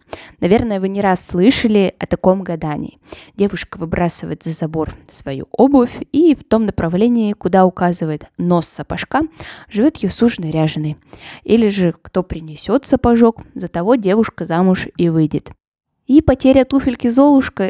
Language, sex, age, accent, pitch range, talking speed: Russian, female, 20-39, native, 170-230 Hz, 135 wpm